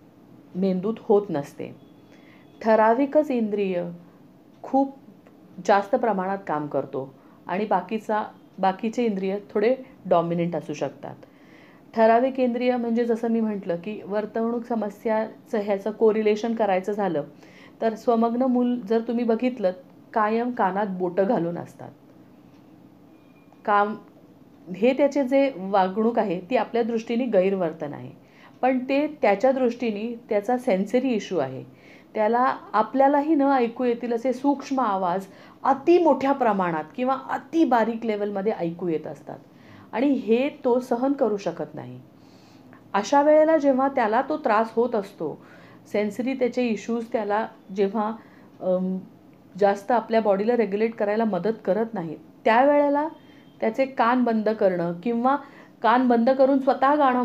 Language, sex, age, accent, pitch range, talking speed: Marathi, female, 40-59, native, 195-250 Hz, 125 wpm